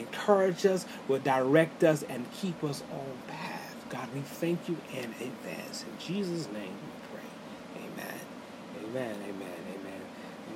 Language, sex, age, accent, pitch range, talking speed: English, male, 30-49, American, 110-160 Hz, 150 wpm